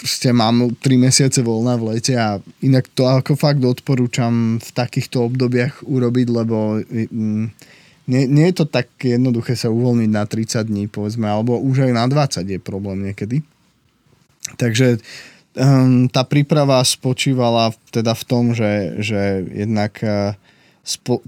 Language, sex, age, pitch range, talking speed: Slovak, male, 20-39, 110-130 Hz, 140 wpm